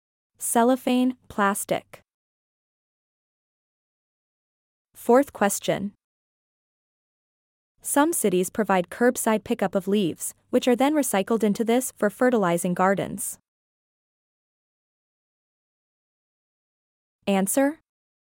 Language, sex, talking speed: English, female, 70 wpm